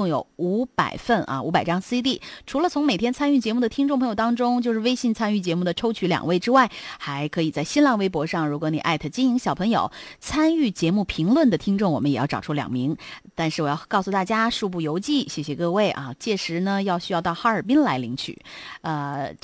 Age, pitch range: 30-49, 160-245 Hz